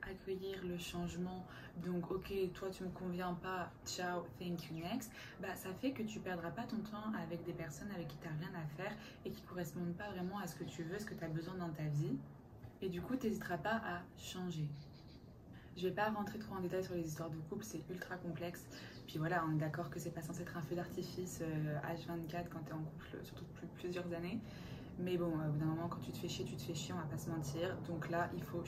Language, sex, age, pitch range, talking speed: French, female, 20-39, 165-190 Hz, 260 wpm